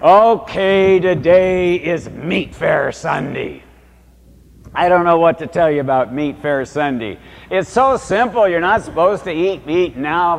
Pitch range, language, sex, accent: 140-185 Hz, English, male, American